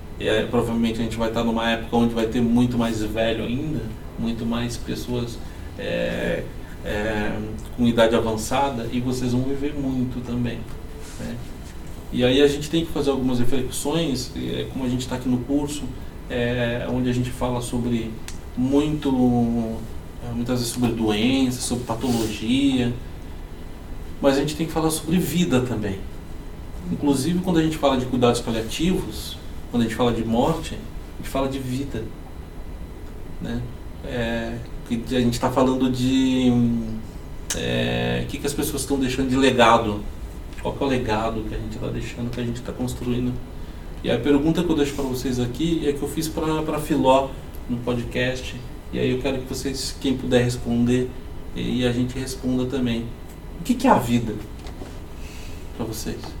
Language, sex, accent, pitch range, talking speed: Portuguese, male, Brazilian, 105-130 Hz, 165 wpm